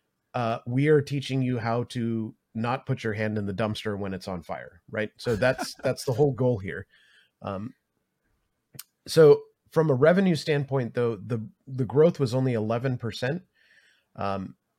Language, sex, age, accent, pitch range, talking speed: English, male, 30-49, American, 115-140 Hz, 165 wpm